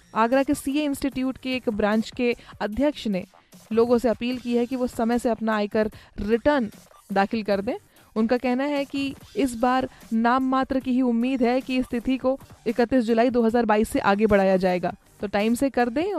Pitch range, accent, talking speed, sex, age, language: 225-260 Hz, native, 195 wpm, female, 20-39, Hindi